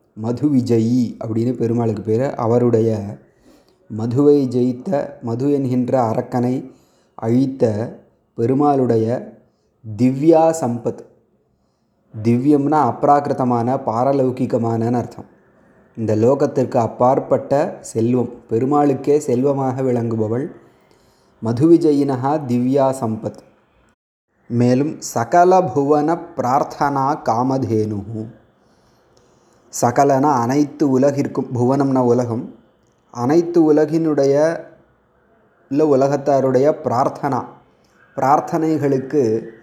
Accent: native